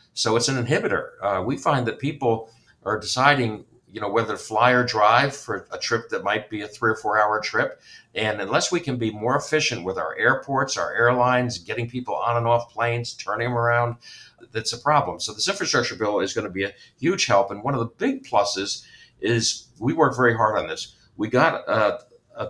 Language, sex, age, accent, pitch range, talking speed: English, male, 60-79, American, 100-125 Hz, 220 wpm